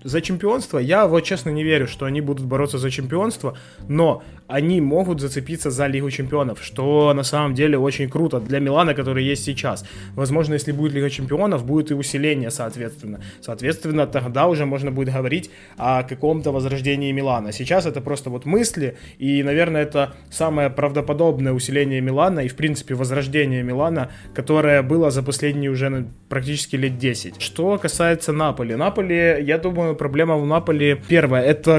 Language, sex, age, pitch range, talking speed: Ukrainian, male, 20-39, 135-160 Hz, 160 wpm